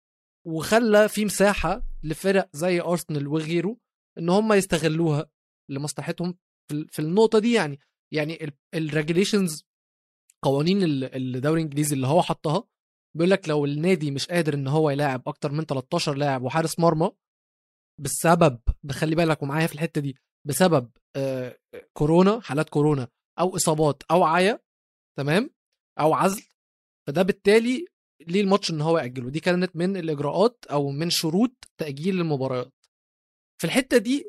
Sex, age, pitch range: male, 20-39, 150-200 Hz